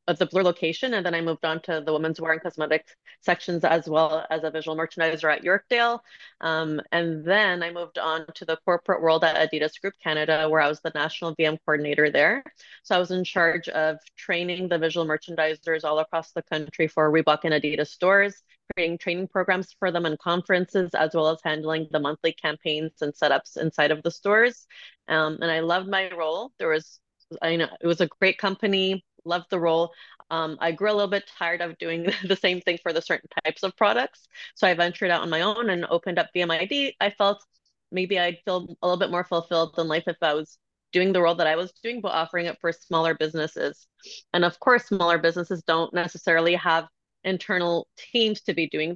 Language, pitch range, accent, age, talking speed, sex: English, 160-185 Hz, American, 20-39, 210 wpm, female